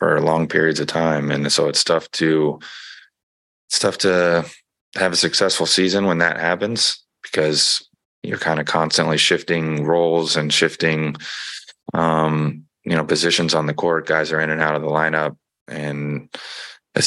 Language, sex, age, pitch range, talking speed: English, male, 20-39, 75-85 Hz, 160 wpm